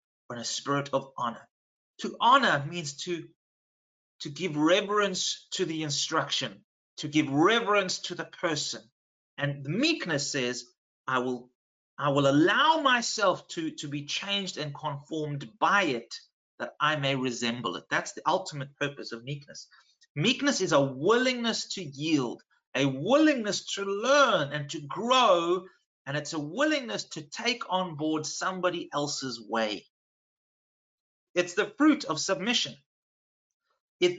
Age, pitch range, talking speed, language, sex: 30-49, 140-190 Hz, 140 wpm, English, male